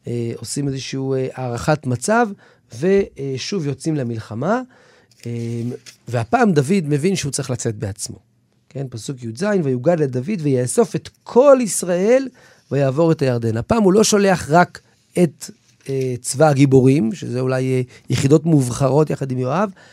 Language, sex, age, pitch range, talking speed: Hebrew, male, 40-59, 125-175 Hz, 125 wpm